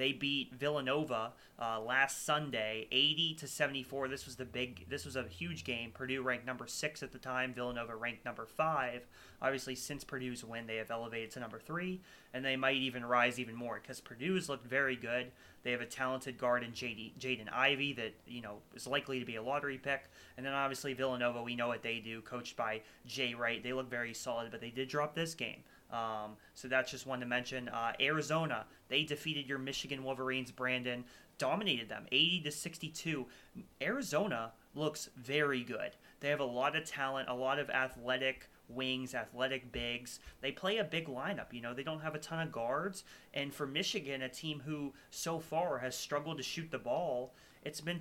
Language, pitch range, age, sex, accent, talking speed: English, 120-145 Hz, 30-49, male, American, 200 wpm